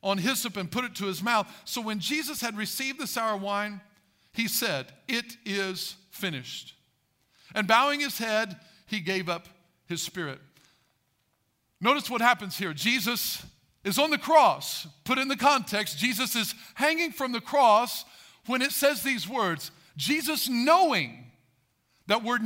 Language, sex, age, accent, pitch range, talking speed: English, male, 50-69, American, 180-245 Hz, 155 wpm